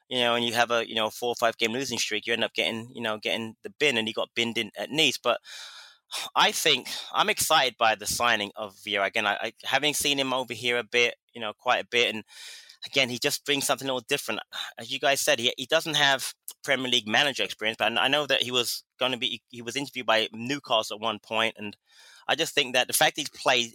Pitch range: 110-130 Hz